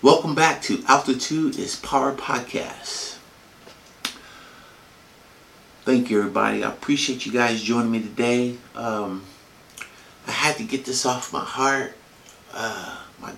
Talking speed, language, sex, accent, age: 125 wpm, English, male, American, 50-69